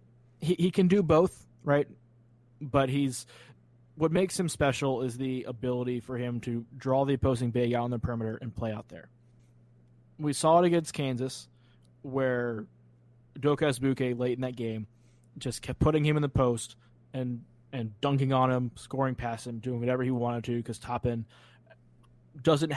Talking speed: 170 wpm